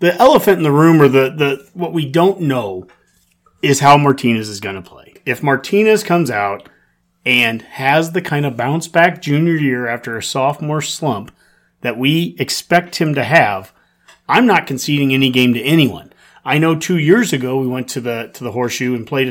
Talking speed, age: 195 wpm, 30-49